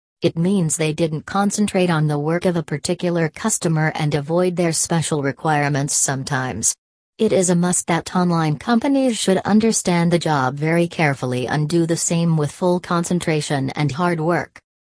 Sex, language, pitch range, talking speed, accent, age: female, English, 145-180 Hz, 165 wpm, American, 40-59